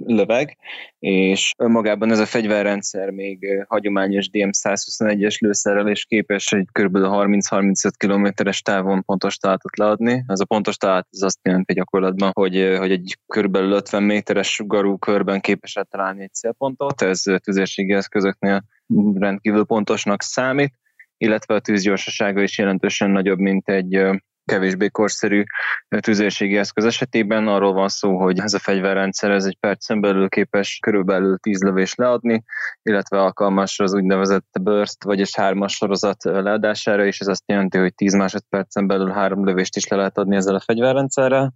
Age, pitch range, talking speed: 20-39, 100-105 Hz, 145 wpm